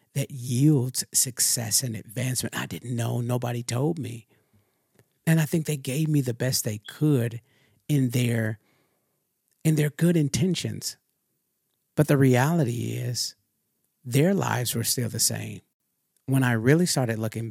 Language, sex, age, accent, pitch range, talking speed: English, male, 50-69, American, 115-145 Hz, 145 wpm